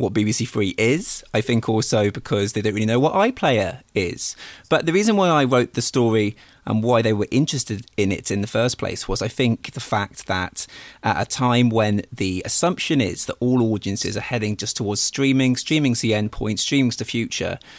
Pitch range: 110-135 Hz